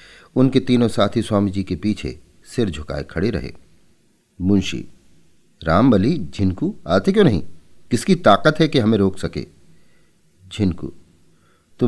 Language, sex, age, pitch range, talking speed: Hindi, male, 40-59, 85-130 Hz, 125 wpm